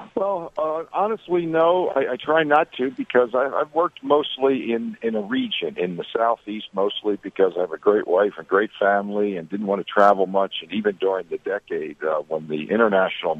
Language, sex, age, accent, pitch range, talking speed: English, male, 60-79, American, 85-130 Hz, 205 wpm